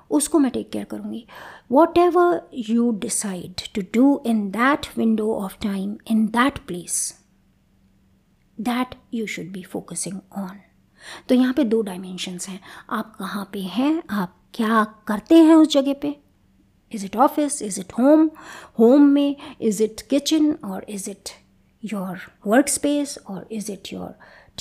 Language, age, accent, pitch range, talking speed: Hindi, 50-69, native, 200-275 Hz, 155 wpm